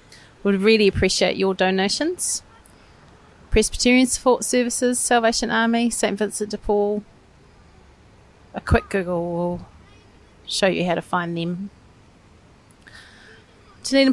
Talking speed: 105 wpm